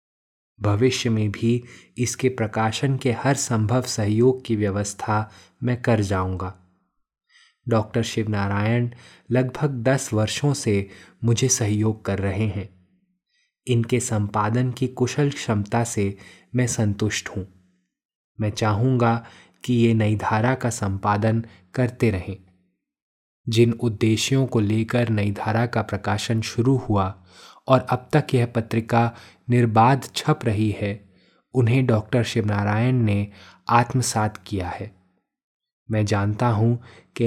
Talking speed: 120 wpm